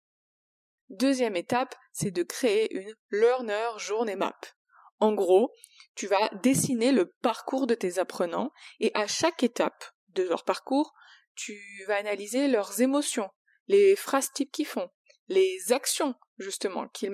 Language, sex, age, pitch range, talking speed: French, female, 20-39, 215-290 Hz, 145 wpm